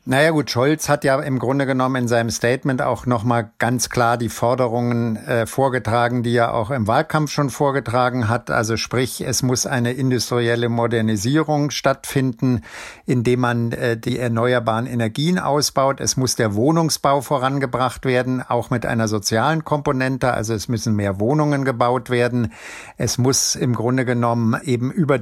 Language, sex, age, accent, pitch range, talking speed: German, male, 50-69, German, 120-140 Hz, 160 wpm